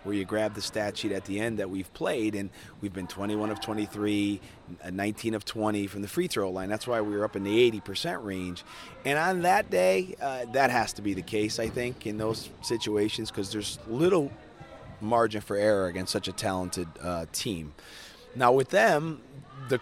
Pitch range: 100-130 Hz